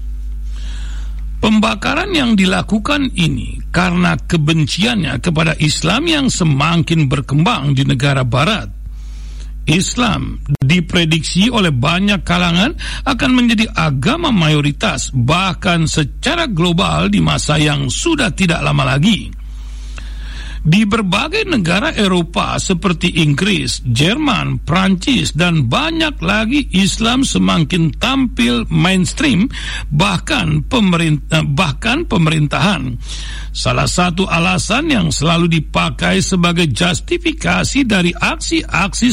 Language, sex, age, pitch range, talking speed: Indonesian, male, 60-79, 145-215 Hz, 95 wpm